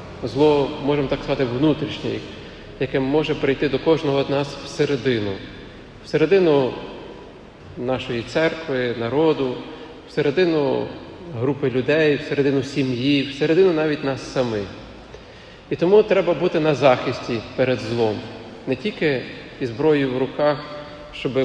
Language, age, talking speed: Ukrainian, 40-59, 110 wpm